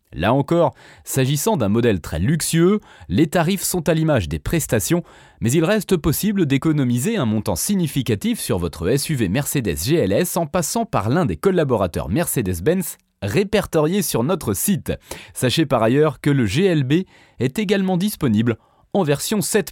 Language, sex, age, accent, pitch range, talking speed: French, male, 30-49, French, 115-180 Hz, 150 wpm